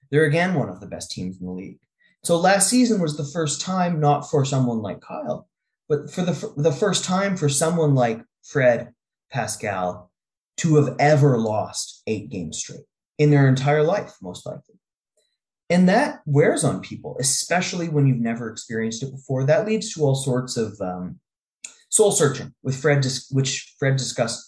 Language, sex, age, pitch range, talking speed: English, male, 20-39, 115-160 Hz, 175 wpm